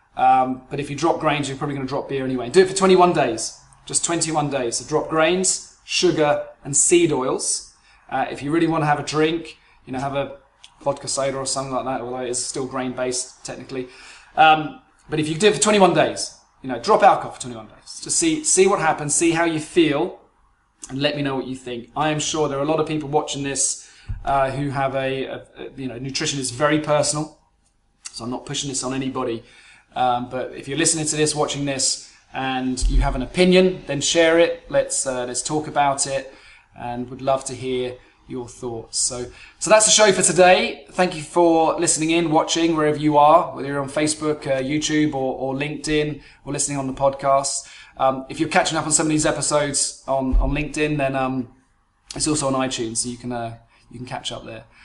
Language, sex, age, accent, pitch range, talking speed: English, male, 20-39, British, 130-160 Hz, 220 wpm